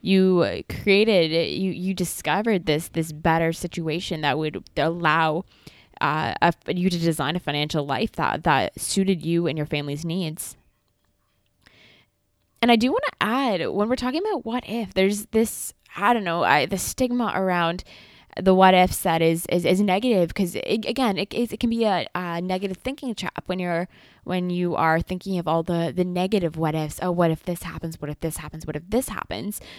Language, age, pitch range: English, 20-39, 170-215 Hz